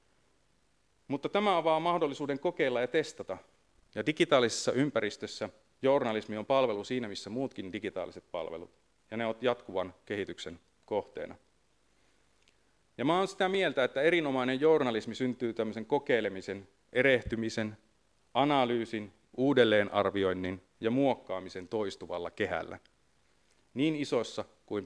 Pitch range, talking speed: 100-135 Hz, 110 wpm